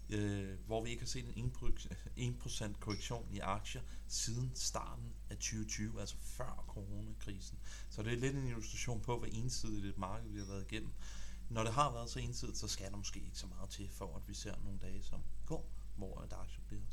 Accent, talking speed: native, 205 wpm